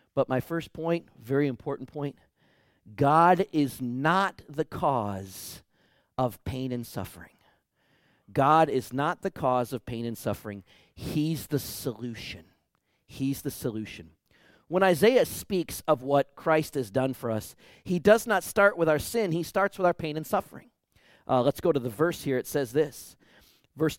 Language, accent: English, American